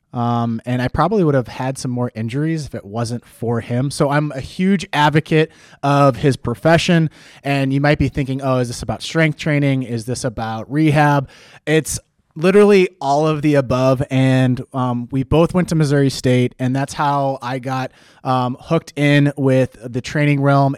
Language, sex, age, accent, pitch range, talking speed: English, male, 20-39, American, 125-145 Hz, 185 wpm